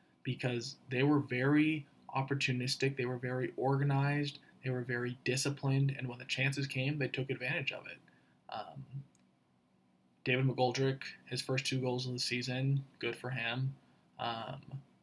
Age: 20-39